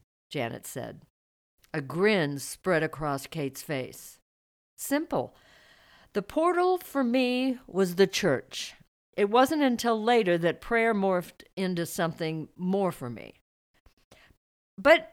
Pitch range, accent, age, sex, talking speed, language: 160-260 Hz, American, 50-69, female, 115 wpm, English